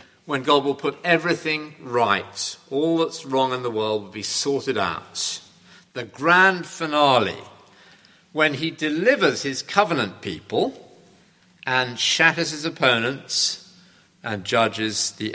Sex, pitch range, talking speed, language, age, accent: male, 105-145 Hz, 125 wpm, English, 50-69, British